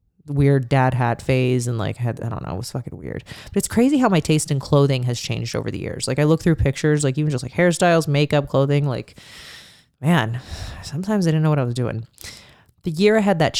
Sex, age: female, 20-39